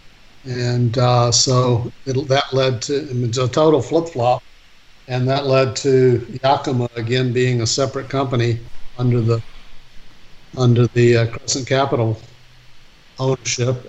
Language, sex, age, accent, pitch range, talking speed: English, male, 60-79, American, 120-135 Hz, 125 wpm